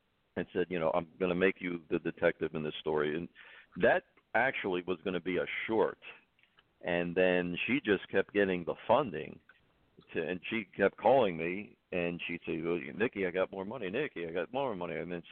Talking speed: 200 wpm